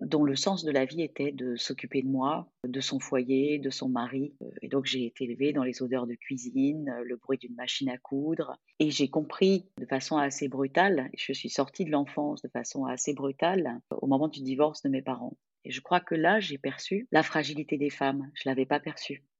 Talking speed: 225 wpm